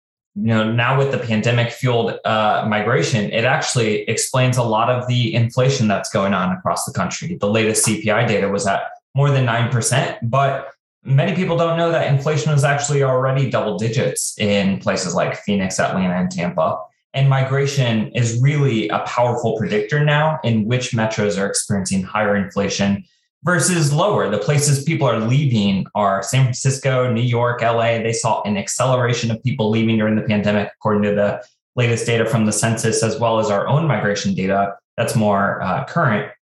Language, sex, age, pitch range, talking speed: English, male, 20-39, 105-135 Hz, 175 wpm